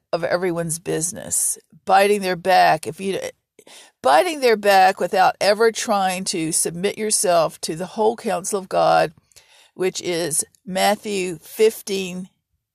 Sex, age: female, 50-69